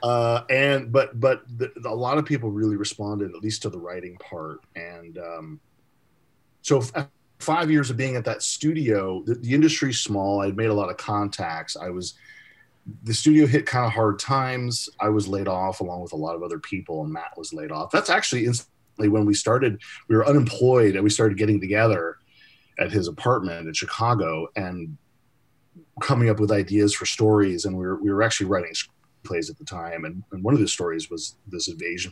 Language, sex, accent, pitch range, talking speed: English, male, American, 100-135 Hz, 210 wpm